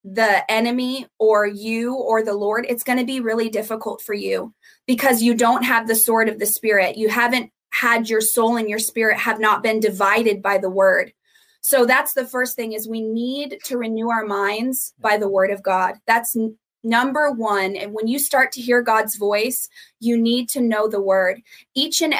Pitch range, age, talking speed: 220-255 Hz, 20-39, 205 wpm